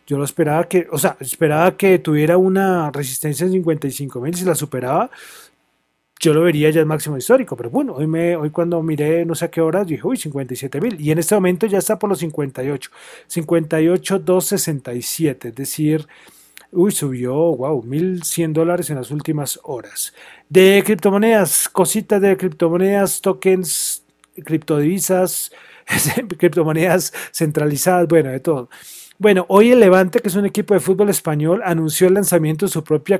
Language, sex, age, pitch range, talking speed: Spanish, male, 30-49, 155-190 Hz, 160 wpm